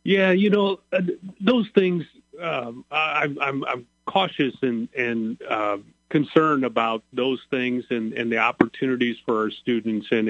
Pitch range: 115-140 Hz